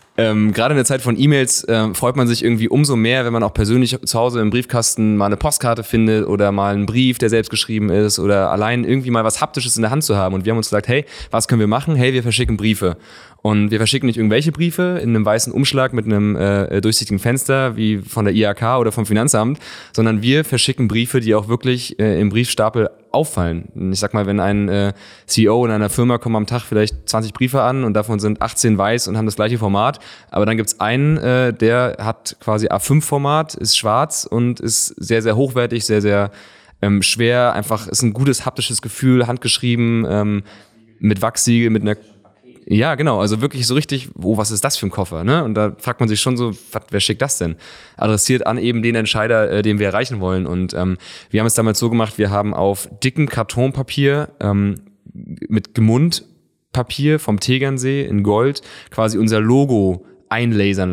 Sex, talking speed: male, 210 wpm